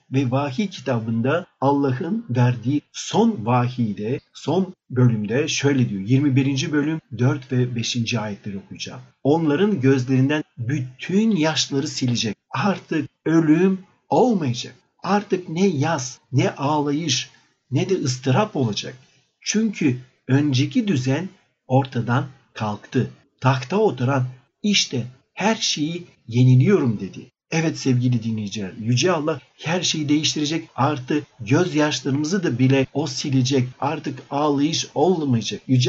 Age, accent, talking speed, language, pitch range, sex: 50-69, native, 110 wpm, Turkish, 130-165 Hz, male